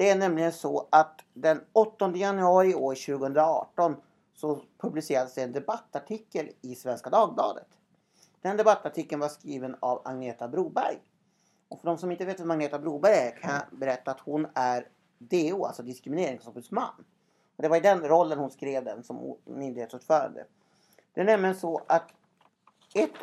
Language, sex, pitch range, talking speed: Swedish, male, 140-190 Hz, 160 wpm